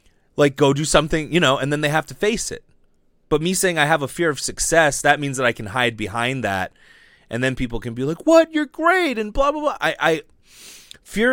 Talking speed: 245 wpm